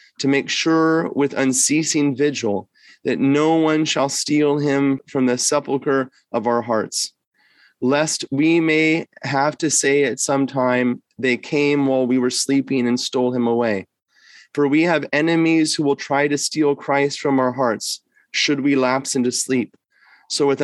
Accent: American